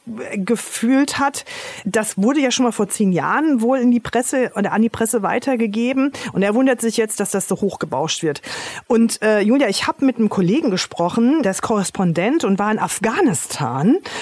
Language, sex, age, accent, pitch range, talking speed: German, female, 40-59, German, 200-255 Hz, 190 wpm